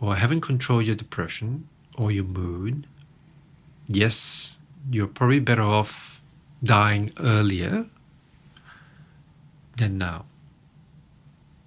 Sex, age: male, 50-69